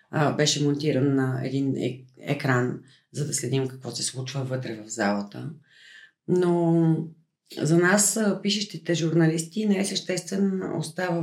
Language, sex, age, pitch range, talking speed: Bulgarian, female, 40-59, 135-170 Hz, 125 wpm